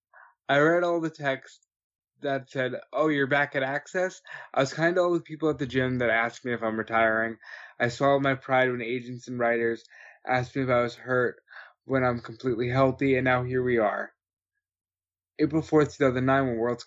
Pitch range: 120-140 Hz